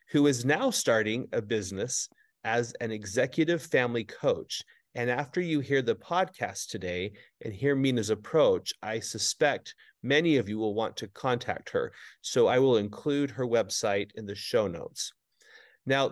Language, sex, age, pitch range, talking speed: English, male, 30-49, 115-150 Hz, 160 wpm